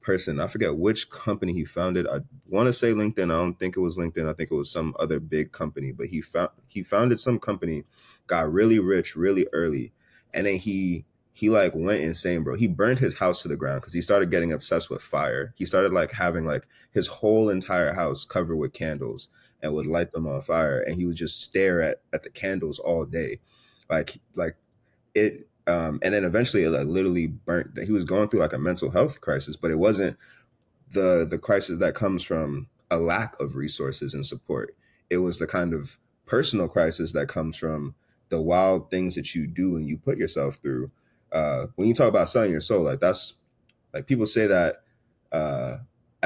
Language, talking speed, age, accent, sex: English, 210 wpm, 30-49, American, male